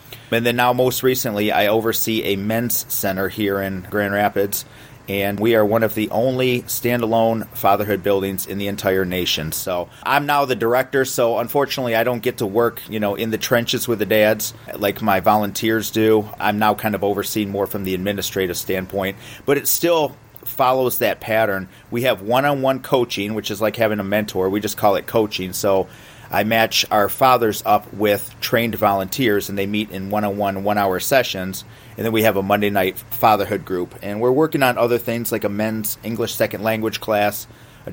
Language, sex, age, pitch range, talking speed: English, male, 30-49, 100-120 Hz, 195 wpm